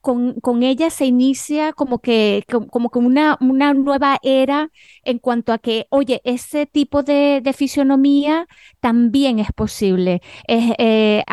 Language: Spanish